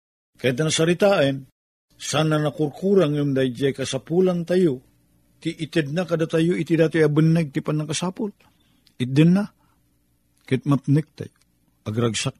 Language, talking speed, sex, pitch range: Filipino, 115 wpm, male, 115-175 Hz